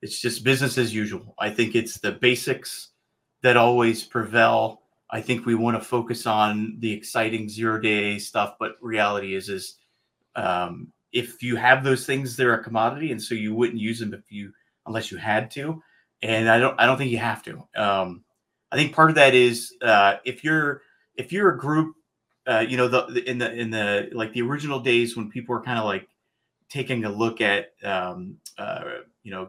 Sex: male